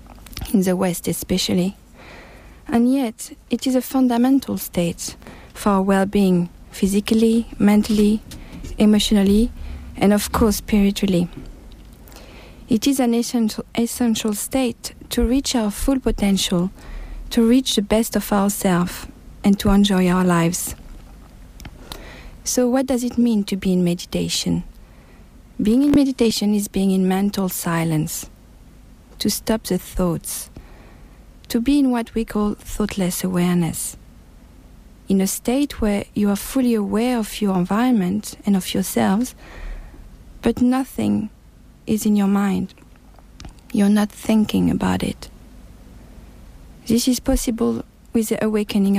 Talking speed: 125 wpm